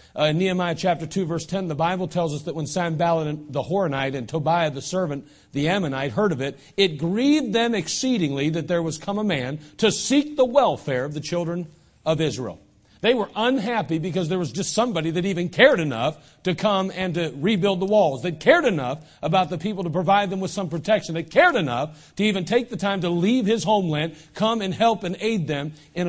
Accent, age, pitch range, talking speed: American, 40-59, 160-200 Hz, 215 wpm